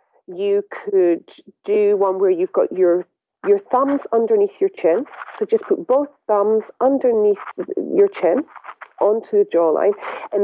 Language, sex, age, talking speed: English, female, 40-59, 145 wpm